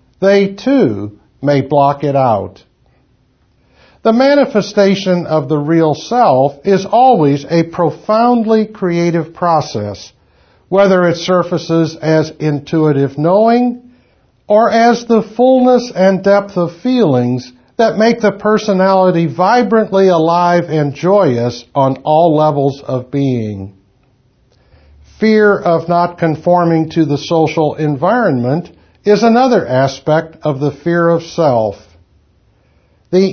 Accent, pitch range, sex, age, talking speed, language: American, 130-195 Hz, male, 60-79, 110 wpm, English